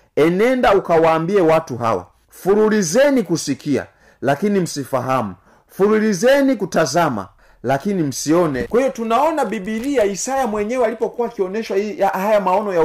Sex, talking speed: male, 110 wpm